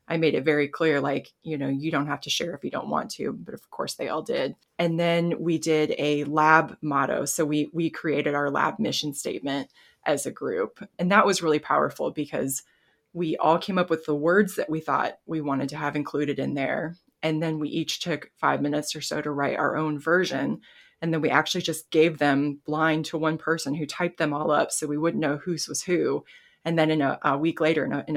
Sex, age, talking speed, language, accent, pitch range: female, 20-39, 235 wpm, English, American, 145-165 Hz